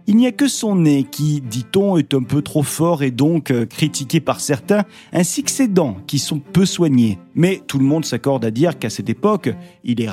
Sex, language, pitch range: male, French, 125-175 Hz